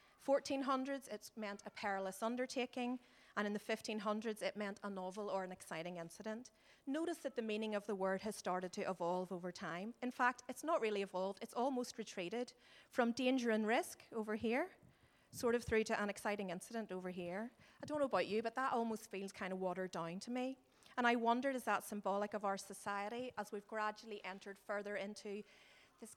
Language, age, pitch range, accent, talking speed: English, 30-49, 200-240 Hz, Irish, 195 wpm